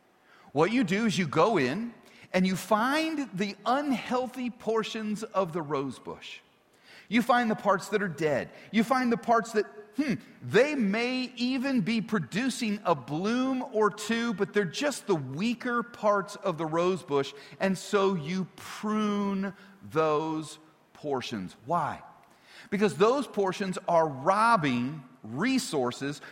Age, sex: 40-59, male